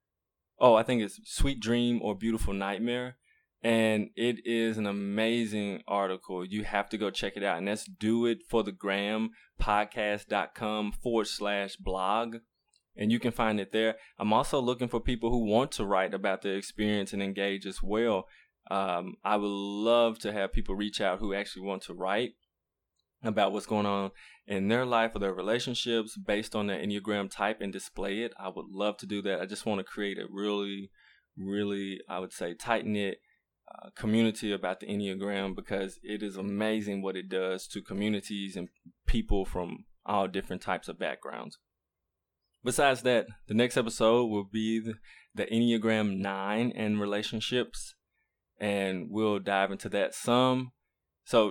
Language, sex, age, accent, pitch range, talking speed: English, male, 20-39, American, 100-115 Hz, 165 wpm